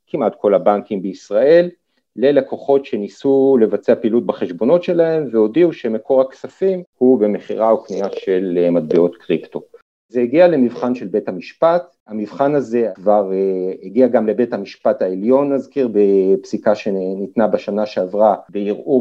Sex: male